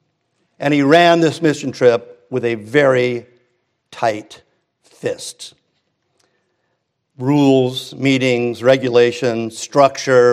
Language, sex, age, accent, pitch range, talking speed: English, male, 50-69, American, 120-155 Hz, 85 wpm